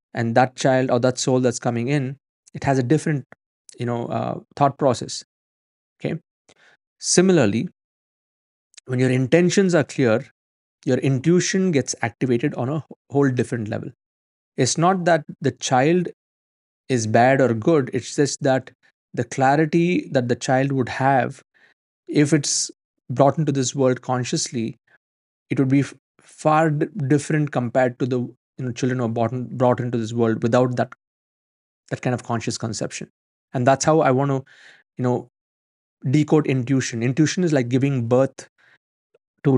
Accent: Indian